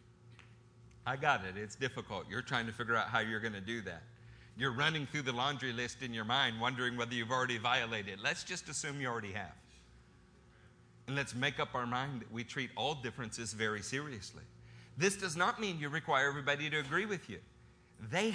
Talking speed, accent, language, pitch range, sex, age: 205 wpm, American, English, 115-175 Hz, male, 50-69